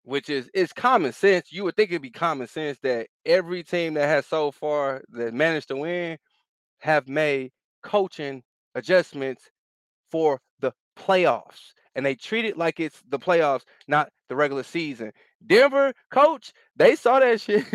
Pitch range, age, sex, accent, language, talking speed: 145-200 Hz, 20-39, male, American, English, 160 wpm